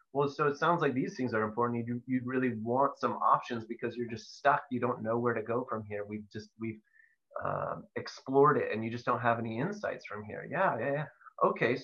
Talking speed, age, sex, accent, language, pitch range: 235 wpm, 30-49, male, American, English, 120-150 Hz